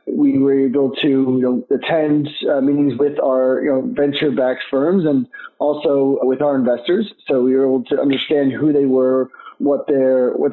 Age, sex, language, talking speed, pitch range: 30-49, male, English, 155 wpm, 130-170 Hz